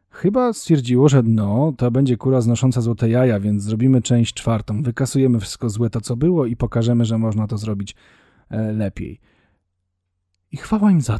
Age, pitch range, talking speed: 40-59, 110-140 Hz, 165 wpm